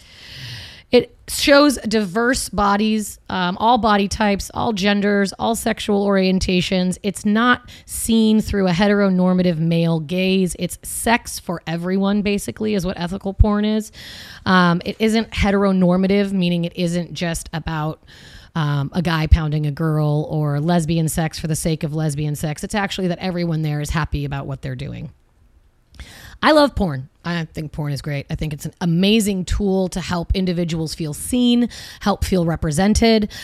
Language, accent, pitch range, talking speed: English, American, 160-200 Hz, 160 wpm